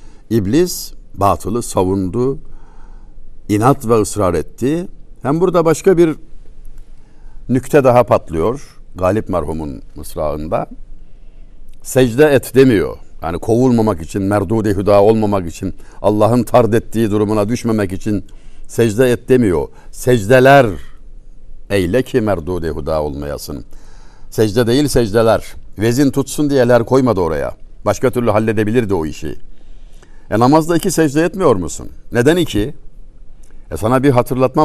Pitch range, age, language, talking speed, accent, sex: 105-145 Hz, 60-79, Turkish, 115 wpm, native, male